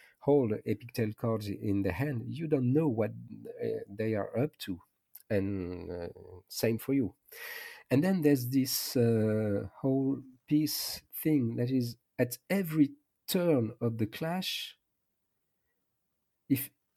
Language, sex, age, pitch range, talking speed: English, male, 50-69, 110-155 Hz, 130 wpm